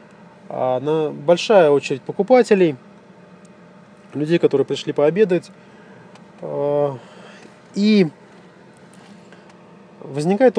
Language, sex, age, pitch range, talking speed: Russian, male, 20-39, 145-200 Hz, 55 wpm